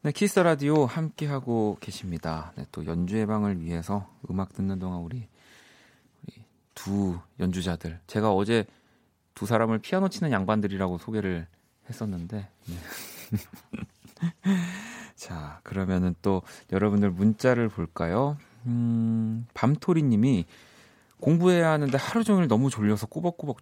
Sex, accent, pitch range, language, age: male, native, 95-140 Hz, Korean, 30-49